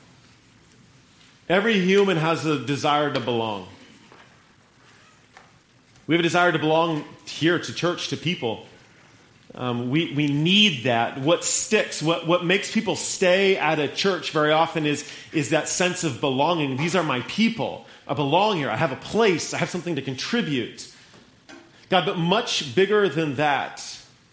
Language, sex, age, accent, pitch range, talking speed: English, male, 30-49, American, 130-165 Hz, 155 wpm